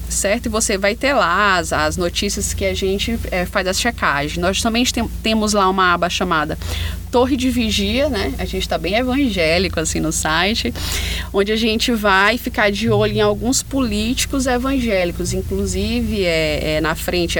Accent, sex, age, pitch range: Brazilian, female, 20-39, 155-215 Hz